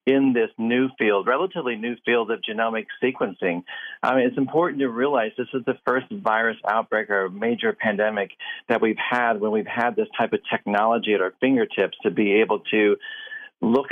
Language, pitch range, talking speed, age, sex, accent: English, 115-145 Hz, 175 wpm, 40-59, male, American